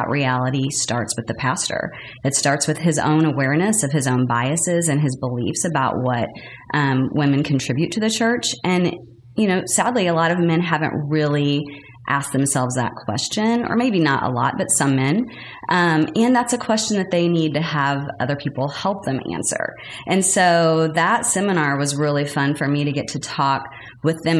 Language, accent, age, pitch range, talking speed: English, American, 30-49, 135-165 Hz, 190 wpm